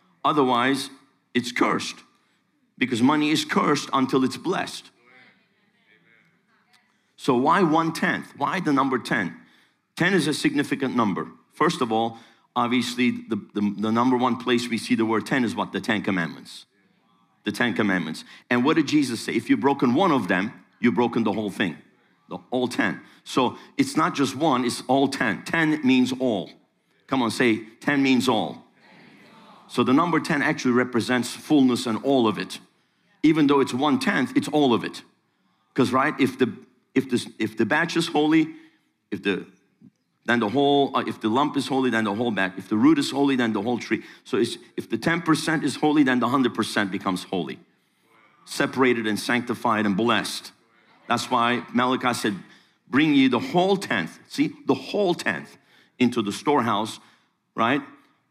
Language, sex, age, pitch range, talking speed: English, male, 50-69, 120-150 Hz, 175 wpm